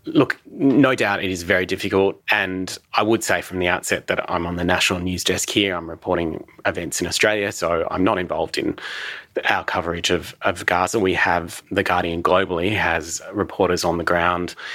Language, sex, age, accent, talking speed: English, male, 30-49, Australian, 190 wpm